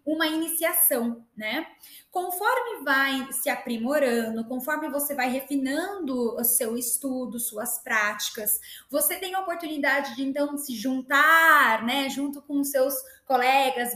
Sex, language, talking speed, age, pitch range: female, Portuguese, 125 wpm, 10-29, 245-305 Hz